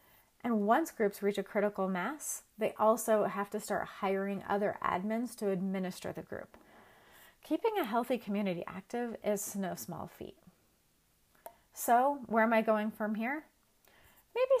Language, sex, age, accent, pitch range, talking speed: English, female, 30-49, American, 190-235 Hz, 150 wpm